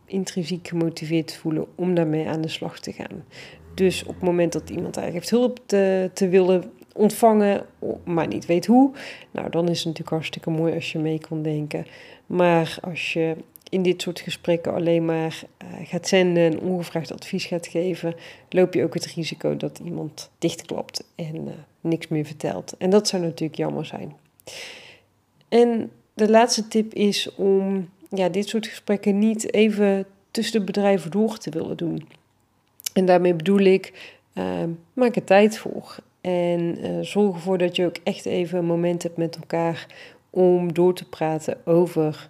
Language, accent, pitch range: Dutch, Dutch, 165-190 Hz